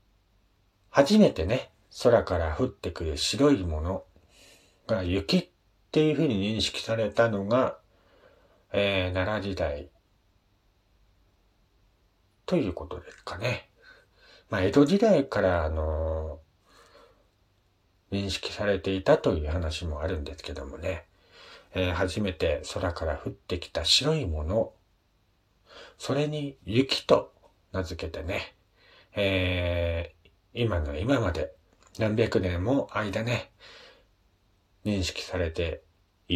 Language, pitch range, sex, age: Japanese, 90-110 Hz, male, 40-59